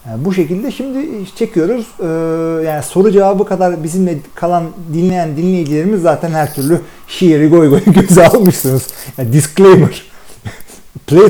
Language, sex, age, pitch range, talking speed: Turkish, male, 40-59, 140-185 Hz, 125 wpm